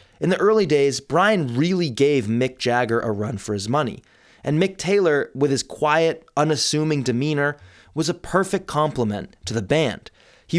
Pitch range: 110-160 Hz